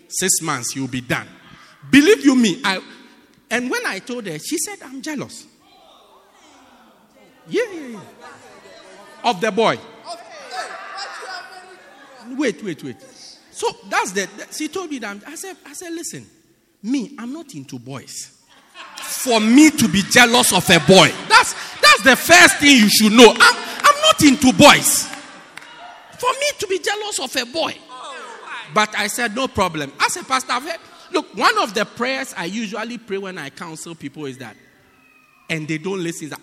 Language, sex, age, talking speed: English, male, 50-69, 165 wpm